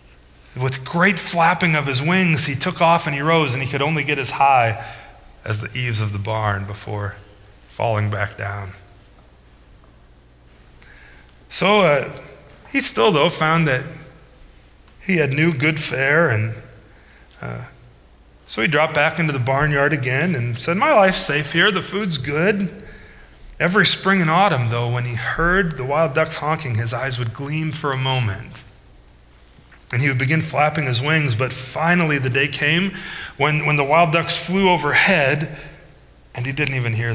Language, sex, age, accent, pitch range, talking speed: English, male, 30-49, American, 105-155 Hz, 165 wpm